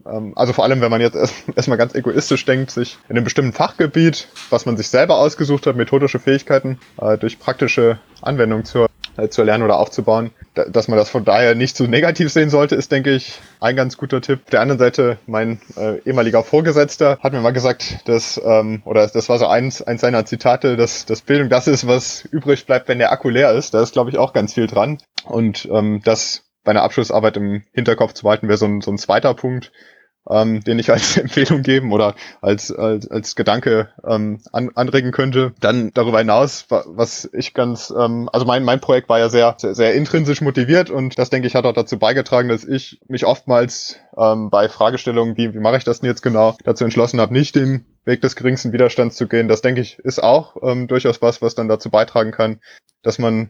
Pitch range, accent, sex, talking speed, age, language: 110-130 Hz, German, male, 210 wpm, 20-39, German